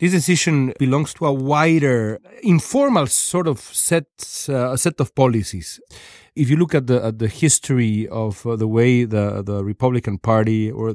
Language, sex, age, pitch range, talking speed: Spanish, male, 40-59, 110-140 Hz, 170 wpm